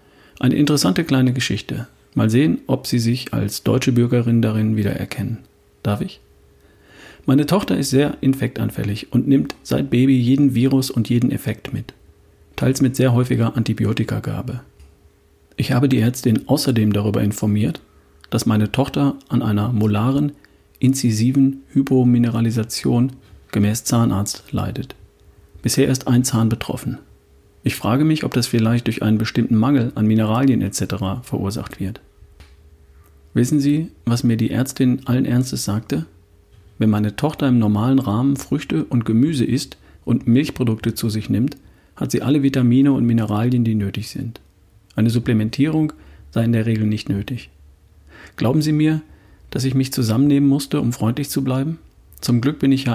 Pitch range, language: 105-130 Hz, German